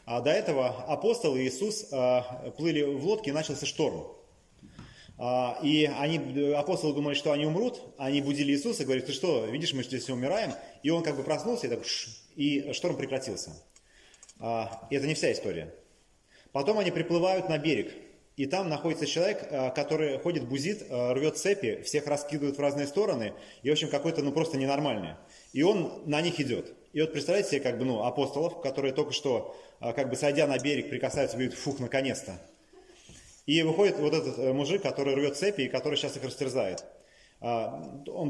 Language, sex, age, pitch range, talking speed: Russian, male, 30-49, 130-160 Hz, 180 wpm